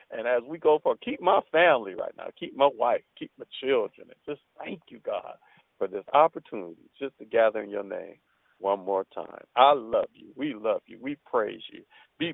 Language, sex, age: English, male, 50-69